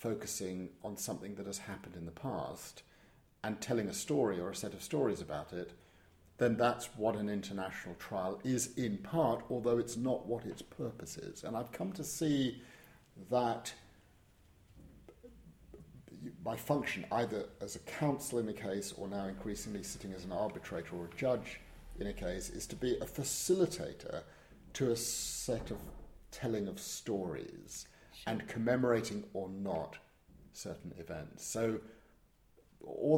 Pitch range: 95-120 Hz